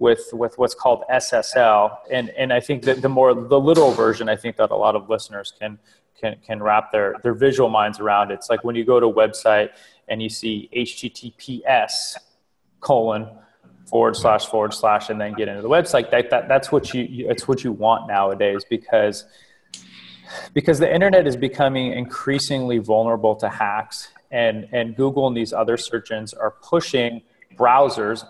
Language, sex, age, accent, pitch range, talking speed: English, male, 30-49, American, 110-125 Hz, 185 wpm